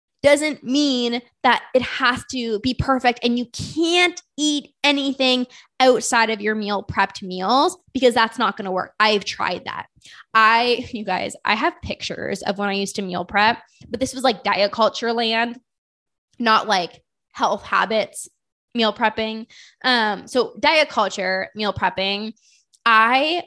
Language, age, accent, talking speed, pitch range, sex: English, 10-29, American, 155 wpm, 210-270 Hz, female